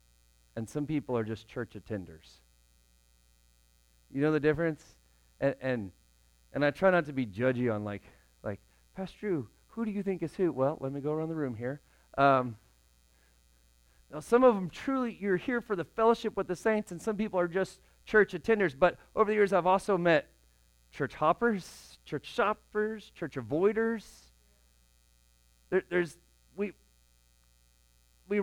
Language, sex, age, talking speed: English, male, 40-59, 165 wpm